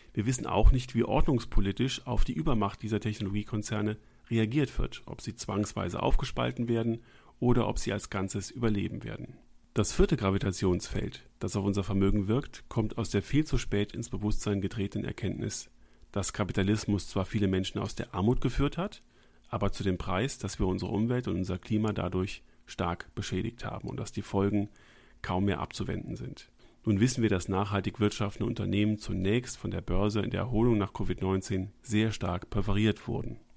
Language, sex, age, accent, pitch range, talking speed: German, male, 40-59, German, 100-115 Hz, 170 wpm